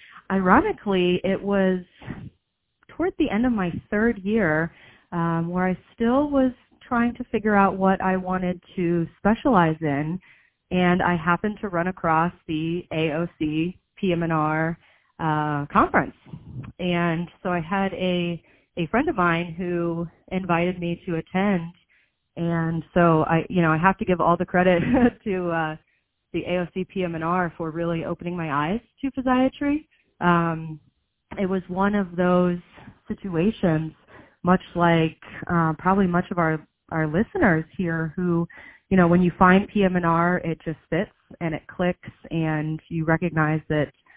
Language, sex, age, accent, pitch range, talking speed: English, female, 30-49, American, 155-185 Hz, 150 wpm